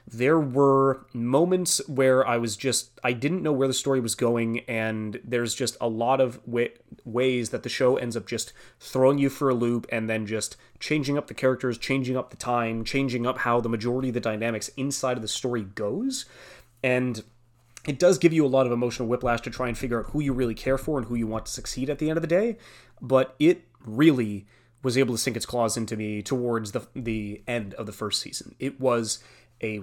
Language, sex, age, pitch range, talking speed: English, male, 30-49, 115-135 Hz, 225 wpm